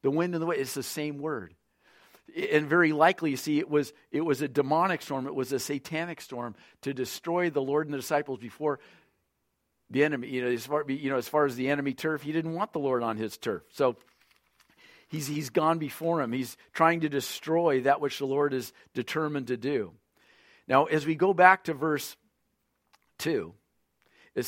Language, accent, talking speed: English, American, 200 wpm